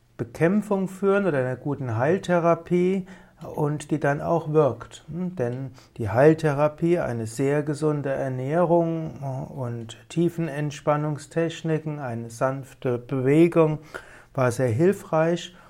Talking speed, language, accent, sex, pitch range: 105 wpm, German, German, male, 130-165 Hz